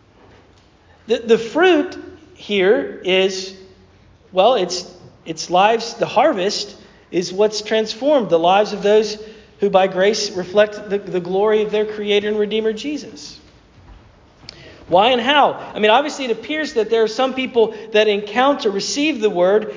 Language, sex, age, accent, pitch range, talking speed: English, male, 40-59, American, 200-255 Hz, 150 wpm